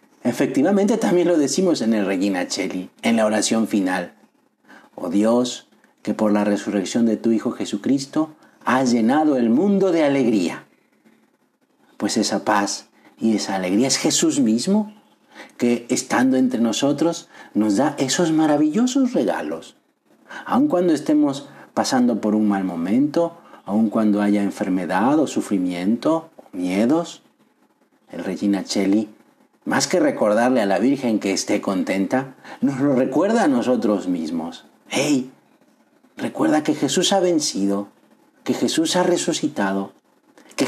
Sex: male